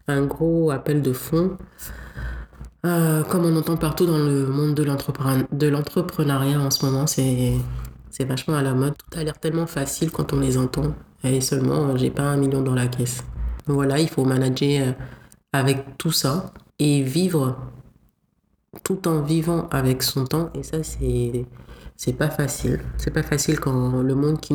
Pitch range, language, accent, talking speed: 125-150 Hz, French, French, 180 wpm